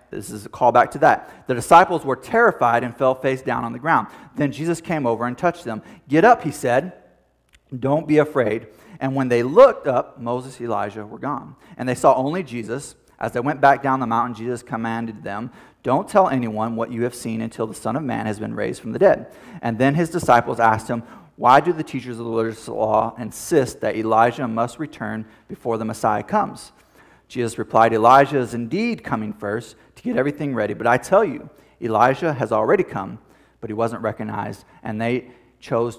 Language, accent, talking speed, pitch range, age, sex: English, American, 205 wpm, 110-135 Hz, 30-49, male